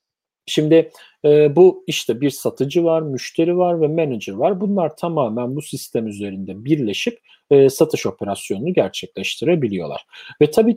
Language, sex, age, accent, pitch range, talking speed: Turkish, male, 40-59, native, 115-165 Hz, 135 wpm